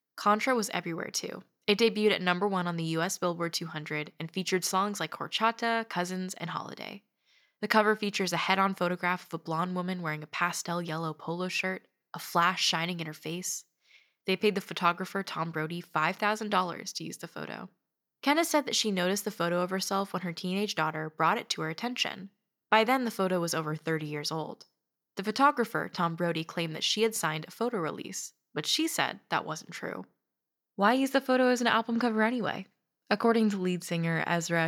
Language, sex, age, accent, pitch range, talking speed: English, female, 10-29, American, 165-215 Hz, 195 wpm